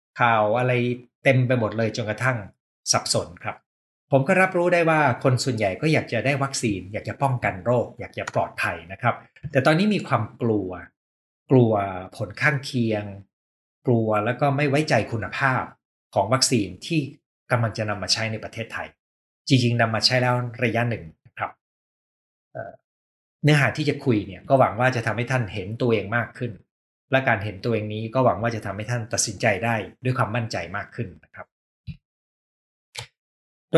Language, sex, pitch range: Thai, male, 105-135 Hz